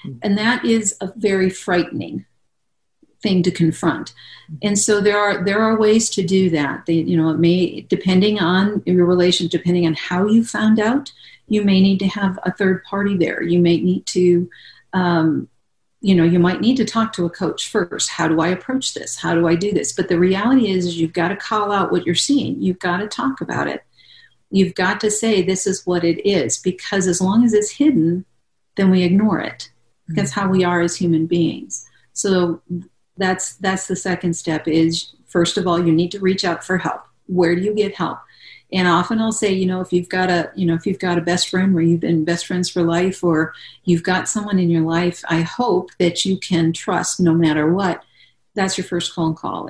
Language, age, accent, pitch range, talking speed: English, 50-69, American, 170-195 Hz, 220 wpm